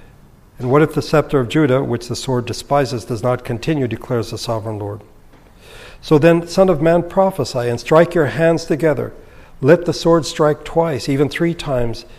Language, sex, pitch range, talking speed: English, male, 120-150 Hz, 180 wpm